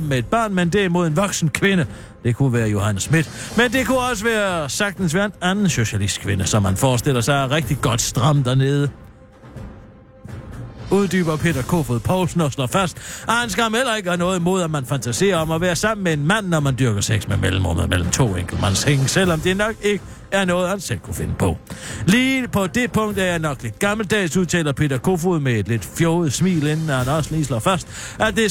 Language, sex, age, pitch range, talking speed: Danish, male, 60-79, 120-185 Hz, 220 wpm